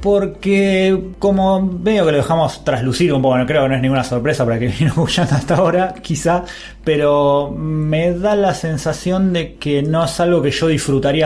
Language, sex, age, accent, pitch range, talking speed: Spanish, male, 20-39, Argentinian, 125-170 Hz, 195 wpm